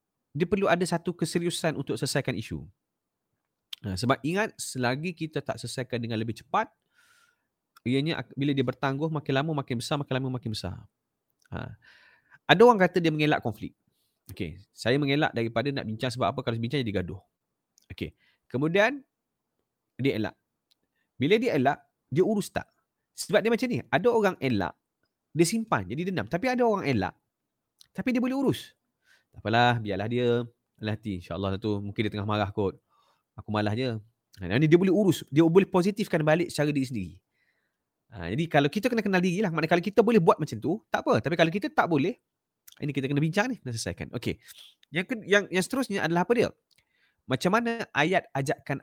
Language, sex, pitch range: English, male, 115-180 Hz